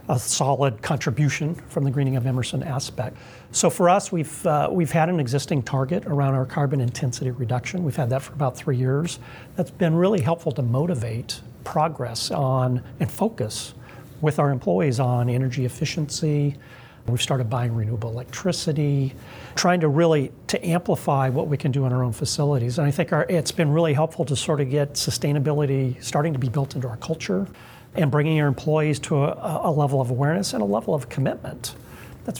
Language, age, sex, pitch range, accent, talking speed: English, 40-59, male, 130-160 Hz, American, 185 wpm